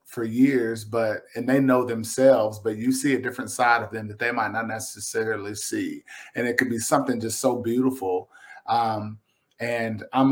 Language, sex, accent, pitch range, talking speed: English, male, American, 105-125 Hz, 185 wpm